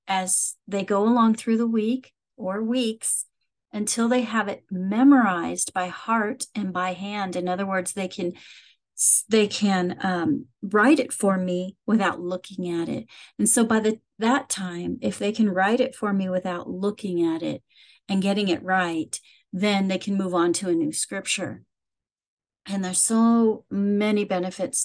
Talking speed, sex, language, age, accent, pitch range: 170 wpm, female, English, 40-59, American, 185-230 Hz